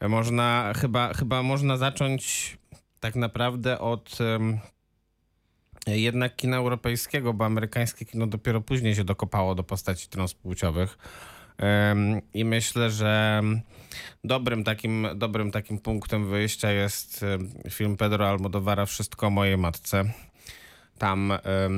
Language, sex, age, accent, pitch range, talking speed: Polish, male, 20-39, native, 95-115 Hz, 120 wpm